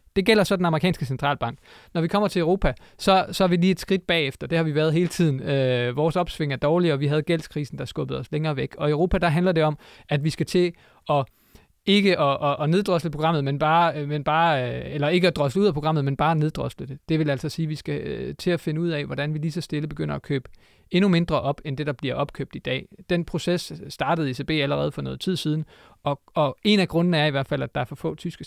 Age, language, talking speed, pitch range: 30-49, Danish, 260 wpm, 140-165 Hz